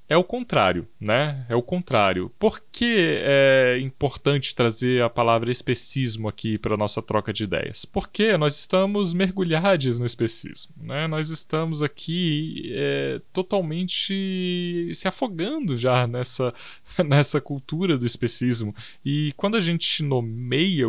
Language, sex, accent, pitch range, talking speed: Portuguese, male, Brazilian, 115-165 Hz, 135 wpm